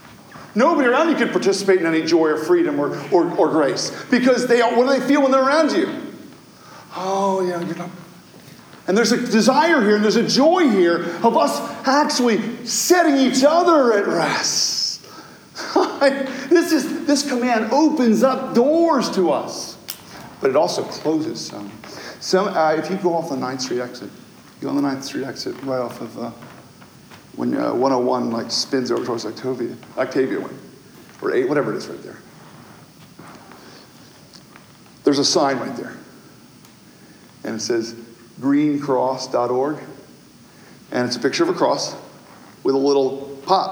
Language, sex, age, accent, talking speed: English, male, 40-59, American, 160 wpm